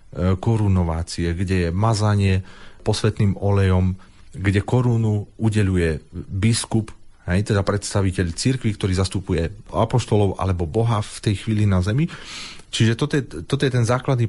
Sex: male